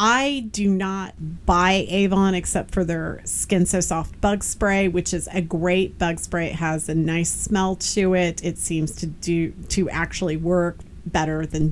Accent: American